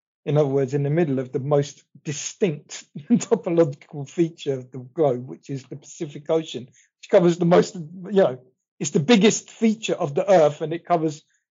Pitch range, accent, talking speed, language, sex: 140-180 Hz, British, 190 wpm, English, male